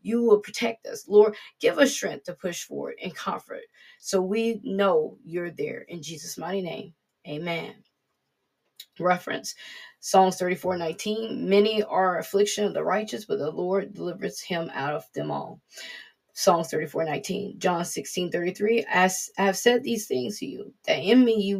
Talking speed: 165 wpm